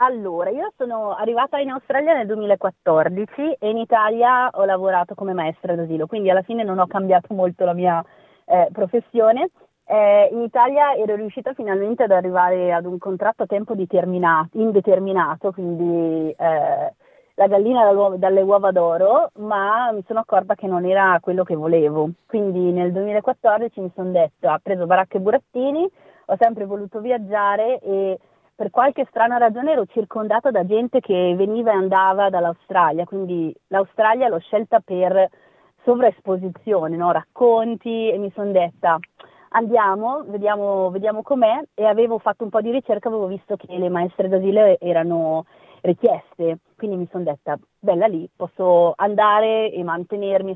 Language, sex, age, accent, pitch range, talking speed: Italian, female, 30-49, native, 180-225 Hz, 155 wpm